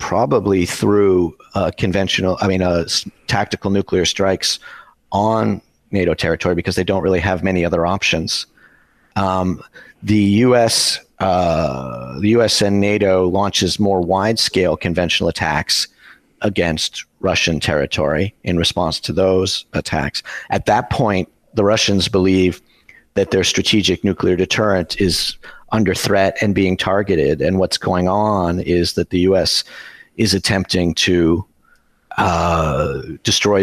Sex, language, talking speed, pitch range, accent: male, English, 130 wpm, 85-100 Hz, American